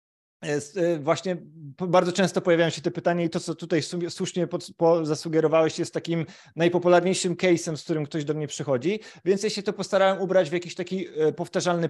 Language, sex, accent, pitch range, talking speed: Polish, male, native, 165-195 Hz, 165 wpm